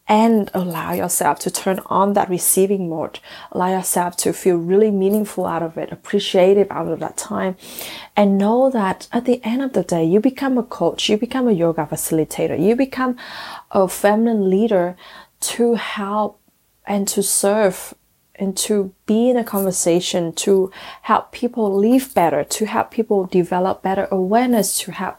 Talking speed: 165 wpm